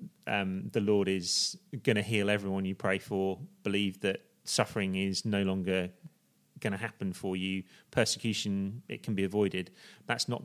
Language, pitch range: English, 95-110 Hz